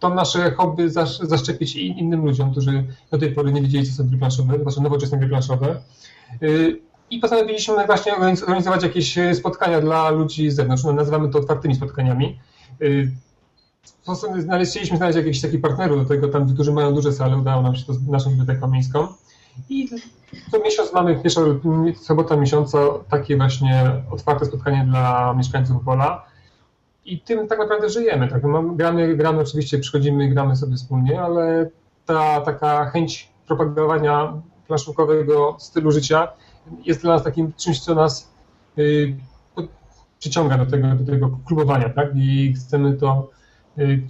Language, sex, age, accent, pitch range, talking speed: Polish, male, 40-59, native, 135-165 Hz, 145 wpm